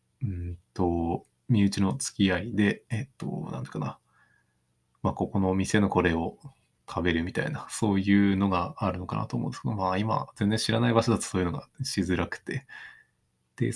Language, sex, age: Japanese, male, 20-39